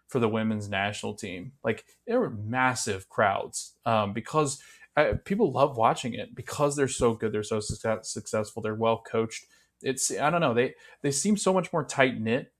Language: English